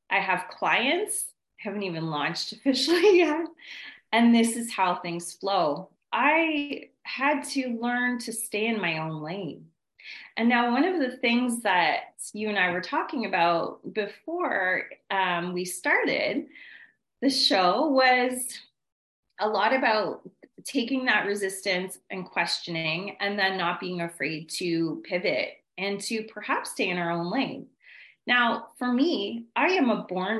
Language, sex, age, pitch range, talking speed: English, female, 30-49, 180-255 Hz, 145 wpm